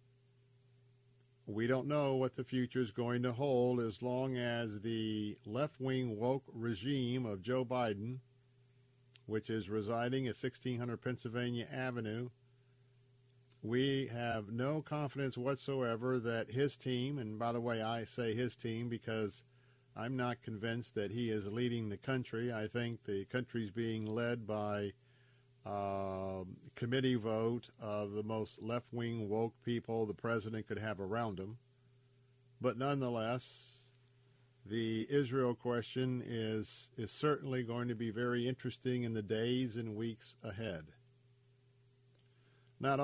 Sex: male